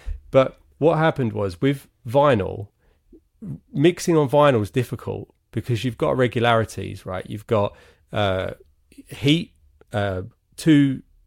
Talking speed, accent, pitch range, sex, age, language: 115 wpm, British, 105-135 Hz, male, 30-49, English